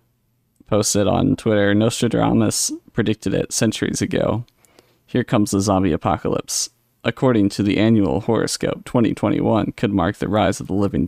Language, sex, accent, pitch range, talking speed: English, male, American, 105-120 Hz, 140 wpm